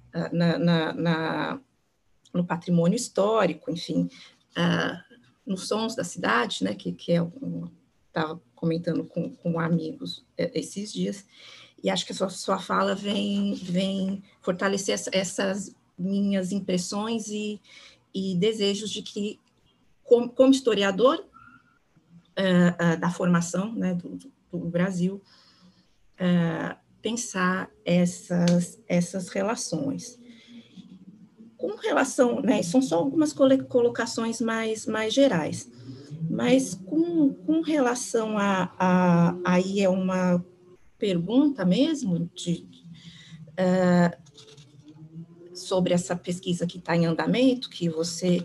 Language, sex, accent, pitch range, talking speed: Portuguese, female, Brazilian, 170-220 Hz, 115 wpm